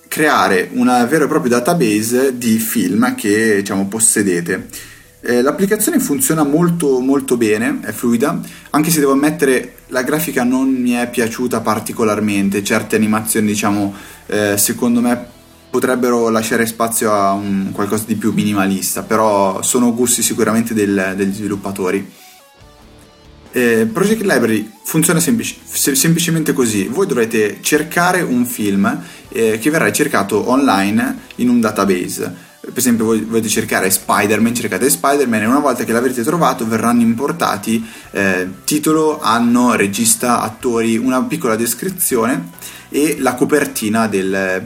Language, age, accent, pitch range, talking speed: Italian, 30-49, native, 105-145 Hz, 135 wpm